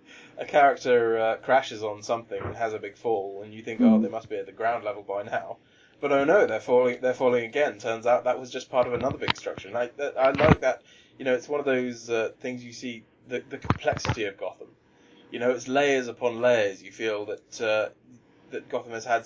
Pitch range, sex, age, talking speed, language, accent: 115-145 Hz, male, 20-39, 235 wpm, English, British